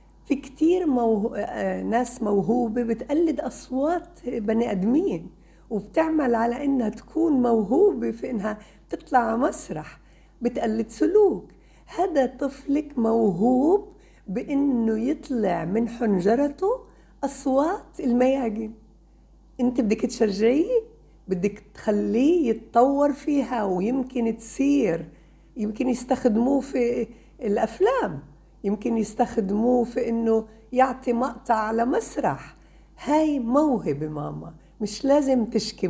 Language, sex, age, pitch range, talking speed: Arabic, female, 50-69, 210-270 Hz, 95 wpm